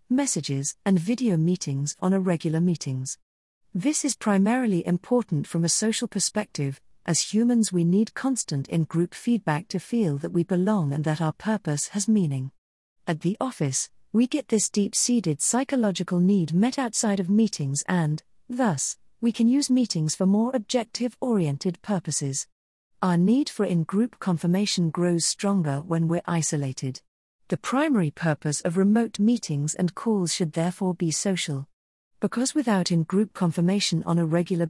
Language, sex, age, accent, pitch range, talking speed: English, female, 40-59, British, 155-215 Hz, 145 wpm